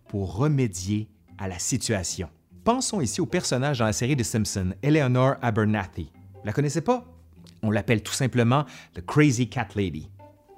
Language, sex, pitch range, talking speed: French, male, 100-170 Hz, 170 wpm